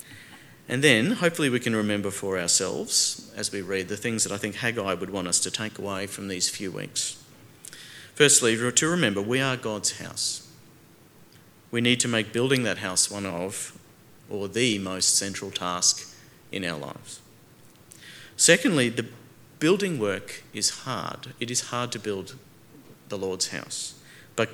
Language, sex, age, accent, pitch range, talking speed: English, male, 40-59, Australian, 100-125 Hz, 160 wpm